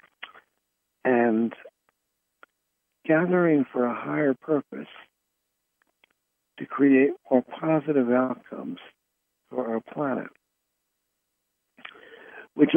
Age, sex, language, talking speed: 60-79, male, English, 70 wpm